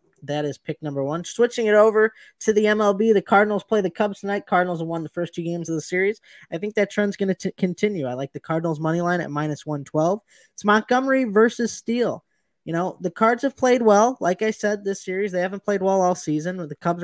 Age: 20-39